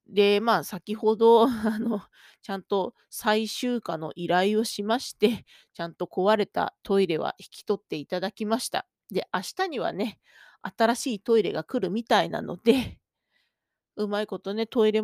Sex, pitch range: female, 190-255 Hz